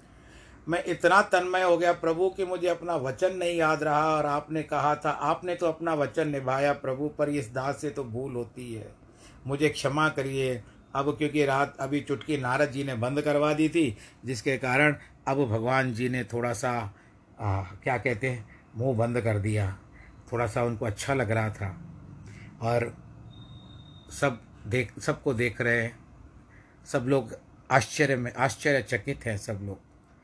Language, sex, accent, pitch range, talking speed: Hindi, male, native, 110-145 Hz, 175 wpm